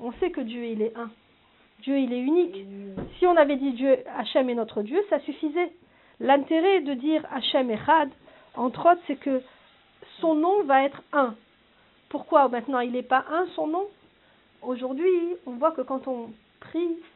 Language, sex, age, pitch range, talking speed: French, female, 40-59, 235-320 Hz, 180 wpm